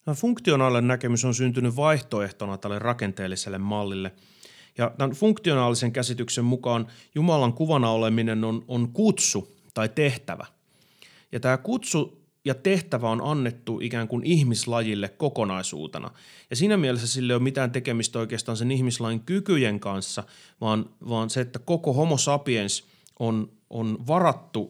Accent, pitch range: native, 110-135 Hz